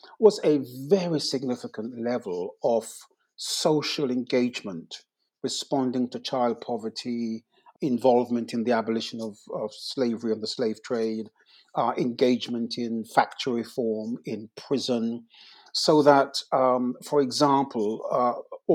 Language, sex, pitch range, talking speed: English, male, 120-145 Hz, 115 wpm